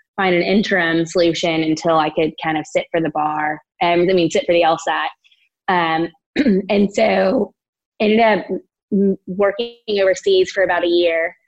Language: English